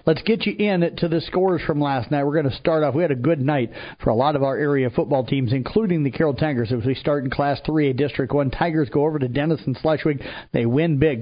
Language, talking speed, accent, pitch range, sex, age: English, 275 wpm, American, 135-165 Hz, male, 50-69